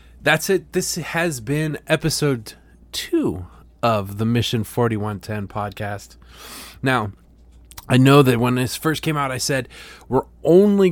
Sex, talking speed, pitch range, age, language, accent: male, 135 wpm, 105-145 Hz, 20-39, English, American